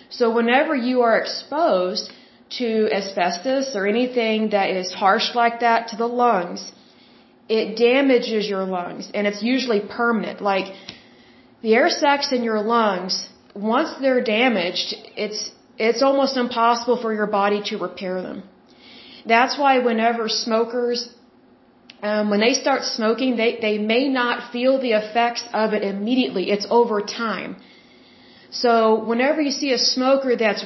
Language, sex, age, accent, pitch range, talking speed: Bengali, female, 30-49, American, 210-245 Hz, 145 wpm